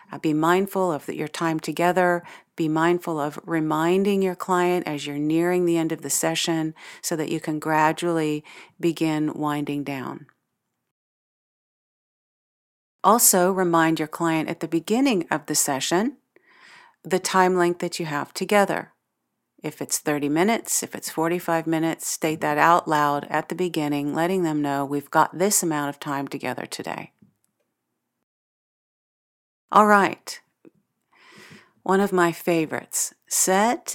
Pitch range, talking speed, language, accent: 155-190 Hz, 140 wpm, English, American